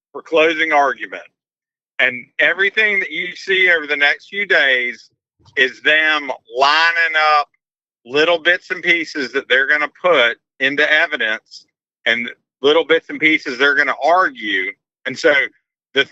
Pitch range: 135-170 Hz